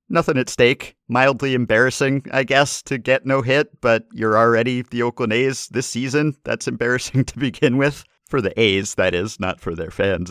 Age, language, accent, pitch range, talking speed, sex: 50-69, English, American, 95-125 Hz, 190 wpm, male